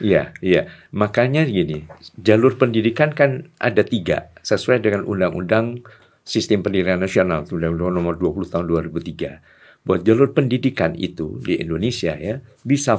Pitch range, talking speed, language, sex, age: 95-135 Hz, 130 wpm, Indonesian, male, 50-69